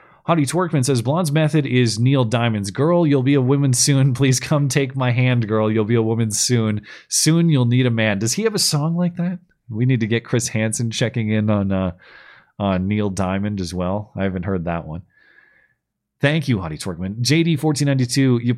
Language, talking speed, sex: English, 205 wpm, male